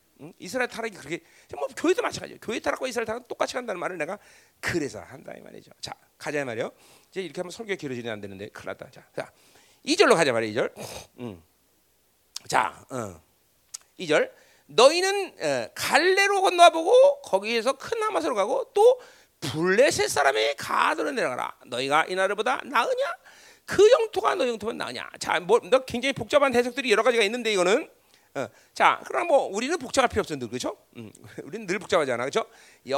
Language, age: Korean, 40-59